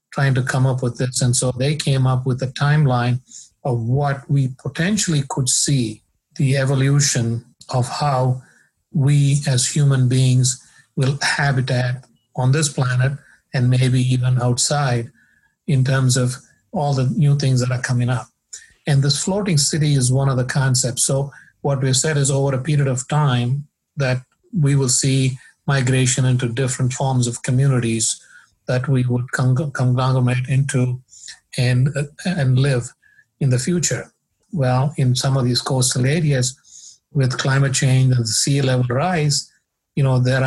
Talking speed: 160 wpm